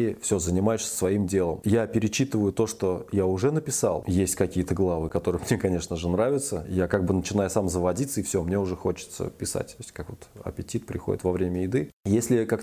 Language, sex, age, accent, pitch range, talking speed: Russian, male, 20-39, native, 90-115 Hz, 200 wpm